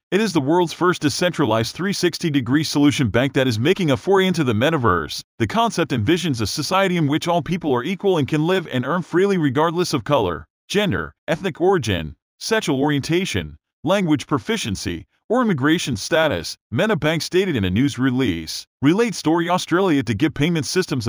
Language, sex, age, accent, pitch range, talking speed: English, male, 40-59, American, 135-175 Hz, 175 wpm